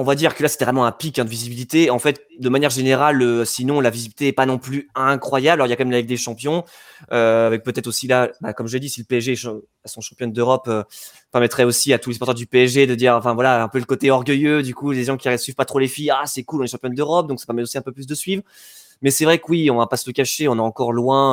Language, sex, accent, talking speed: French, male, French, 320 wpm